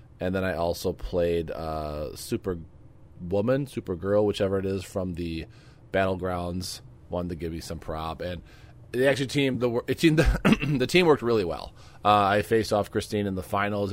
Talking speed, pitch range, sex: 180 wpm, 90-115 Hz, male